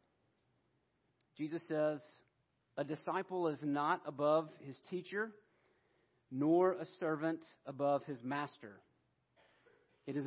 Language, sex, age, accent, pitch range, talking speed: English, male, 40-59, American, 140-170 Hz, 100 wpm